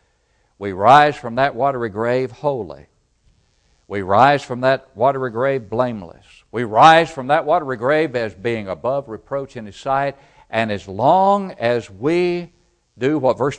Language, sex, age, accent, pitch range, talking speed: English, male, 60-79, American, 100-140 Hz, 155 wpm